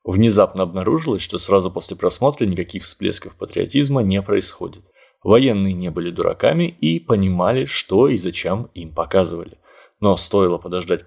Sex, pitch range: male, 90-100 Hz